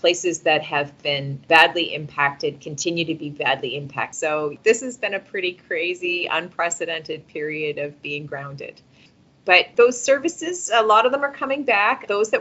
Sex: female